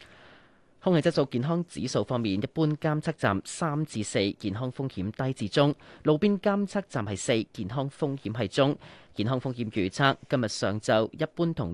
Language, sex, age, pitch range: Chinese, male, 30-49, 110-155 Hz